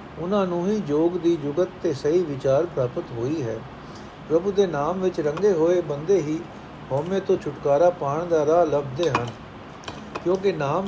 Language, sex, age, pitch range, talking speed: Punjabi, male, 60-79, 140-185 Hz, 165 wpm